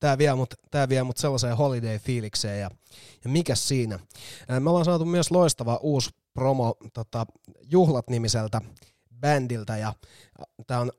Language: Finnish